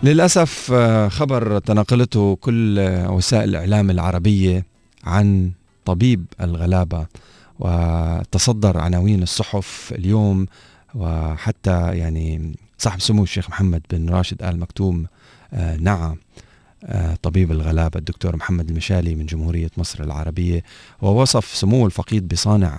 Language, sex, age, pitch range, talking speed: Arabic, male, 30-49, 85-105 Hz, 100 wpm